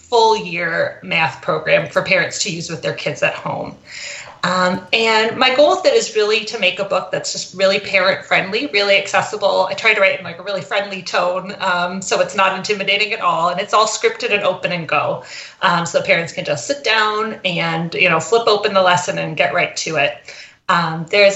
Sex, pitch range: female, 180-225 Hz